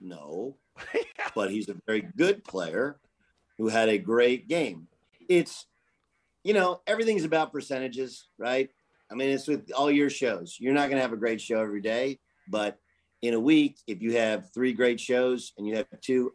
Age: 50-69